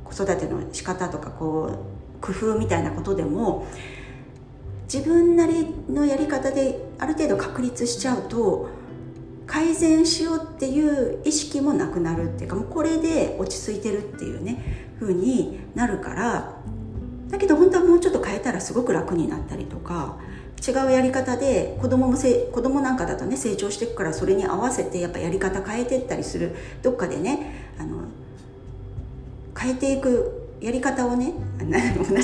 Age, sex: 40-59, female